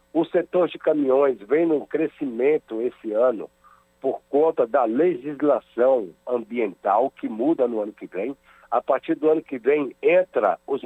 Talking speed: 155 wpm